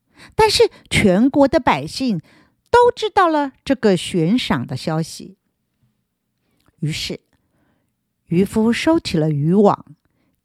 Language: Chinese